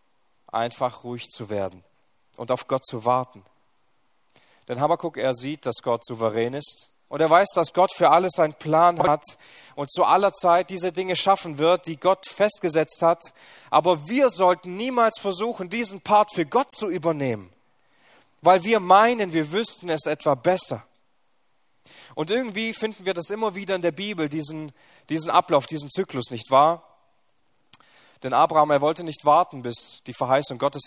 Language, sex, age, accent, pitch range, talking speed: German, male, 30-49, German, 125-175 Hz, 165 wpm